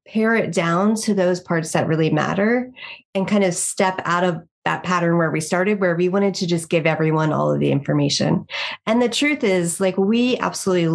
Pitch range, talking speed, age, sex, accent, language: 165-205 Hz, 210 wpm, 30-49, female, American, English